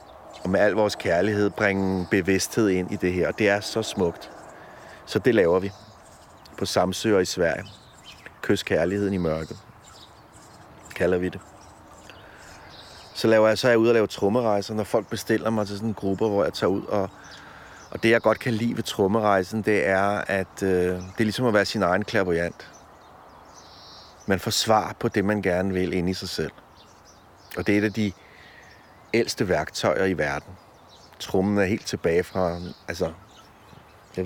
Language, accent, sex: Danish, native, male